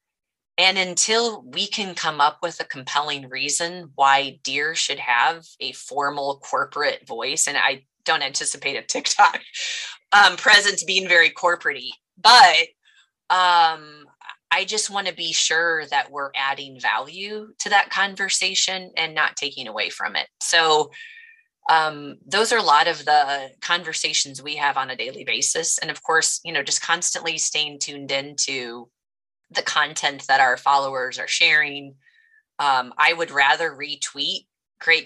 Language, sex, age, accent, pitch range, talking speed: English, female, 20-39, American, 135-180 Hz, 150 wpm